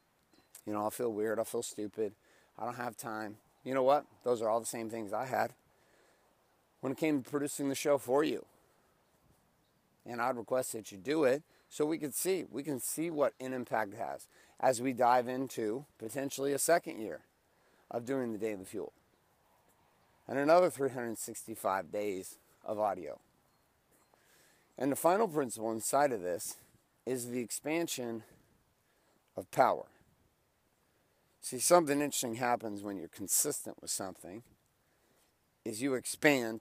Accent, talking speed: American, 155 wpm